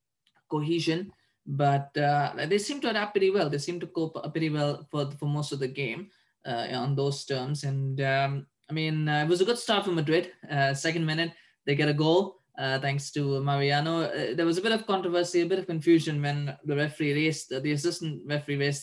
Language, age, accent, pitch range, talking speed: English, 20-39, Indian, 140-165 Hz, 215 wpm